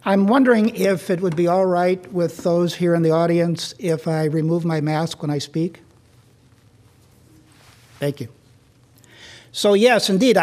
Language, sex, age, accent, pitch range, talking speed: English, male, 50-69, American, 145-180 Hz, 155 wpm